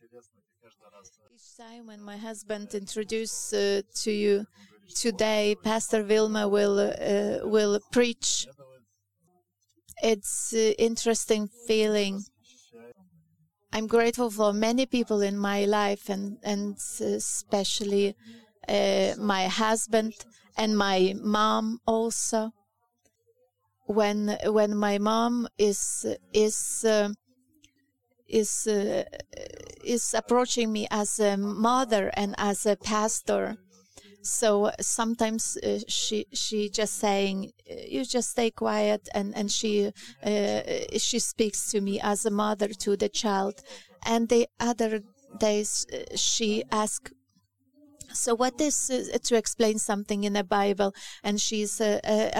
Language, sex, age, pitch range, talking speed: English, female, 30-49, 200-230 Hz, 115 wpm